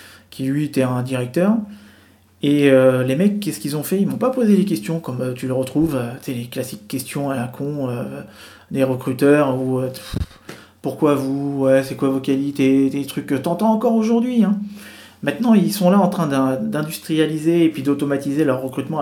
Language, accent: French, French